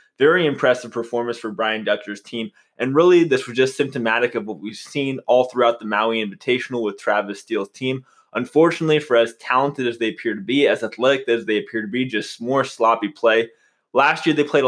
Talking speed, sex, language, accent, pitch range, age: 205 wpm, male, English, American, 115-130 Hz, 20-39